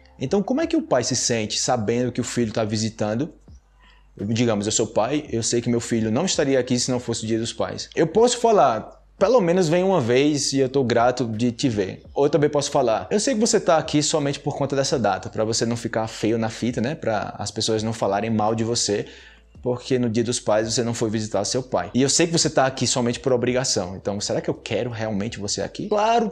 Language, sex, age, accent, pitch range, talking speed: Portuguese, male, 20-39, Brazilian, 115-155 Hz, 250 wpm